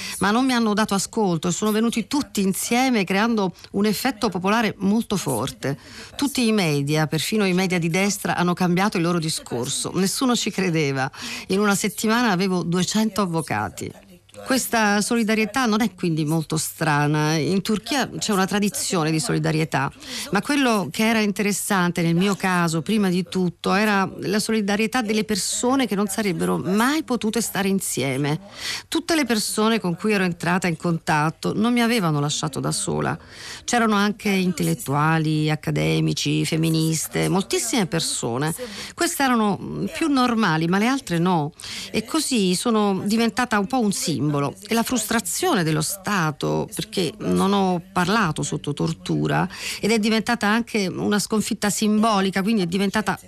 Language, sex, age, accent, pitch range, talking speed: Italian, female, 50-69, native, 165-225 Hz, 150 wpm